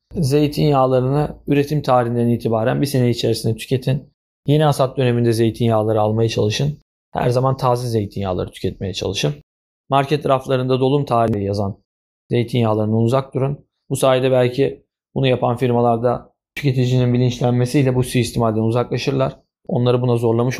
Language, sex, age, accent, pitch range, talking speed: Turkish, male, 40-59, native, 115-145 Hz, 120 wpm